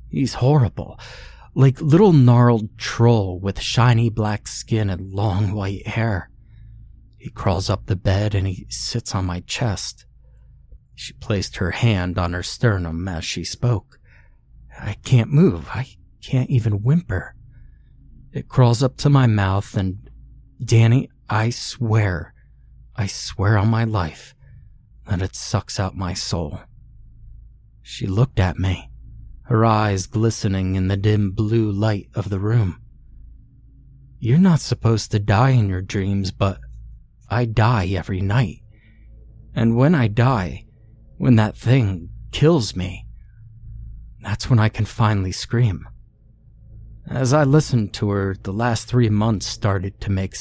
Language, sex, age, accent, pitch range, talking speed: English, male, 30-49, American, 95-120 Hz, 140 wpm